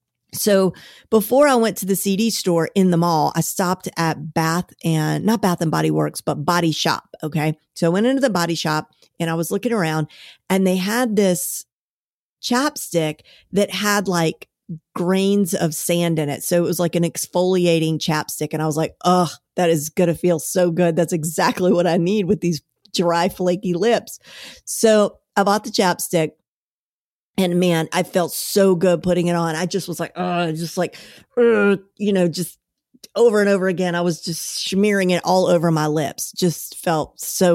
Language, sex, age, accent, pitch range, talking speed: English, female, 50-69, American, 170-210 Hz, 190 wpm